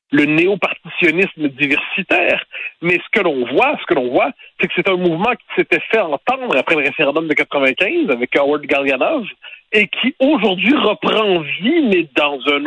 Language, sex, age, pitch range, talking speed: French, male, 60-79, 155-235 Hz, 175 wpm